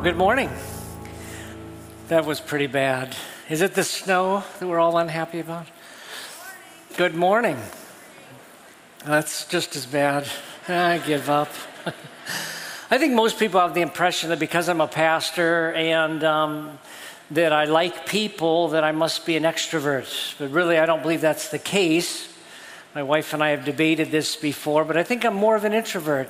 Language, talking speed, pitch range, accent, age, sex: English, 165 wpm, 155-185 Hz, American, 50-69, male